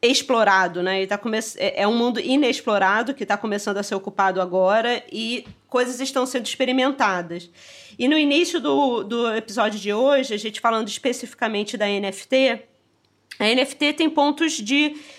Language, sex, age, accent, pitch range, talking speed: Portuguese, female, 20-39, Brazilian, 200-255 Hz, 160 wpm